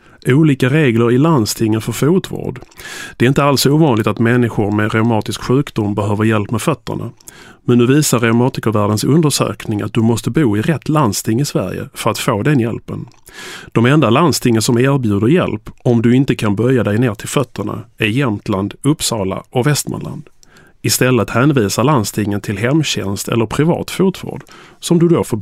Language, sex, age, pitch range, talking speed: Swedish, male, 30-49, 110-140 Hz, 170 wpm